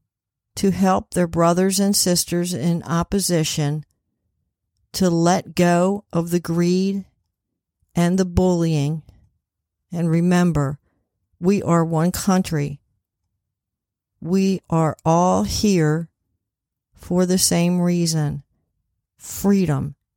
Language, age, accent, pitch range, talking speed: English, 50-69, American, 125-180 Hz, 95 wpm